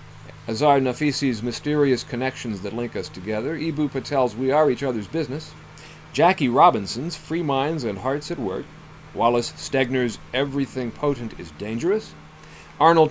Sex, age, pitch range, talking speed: male, 40-59, 90-135 Hz, 135 wpm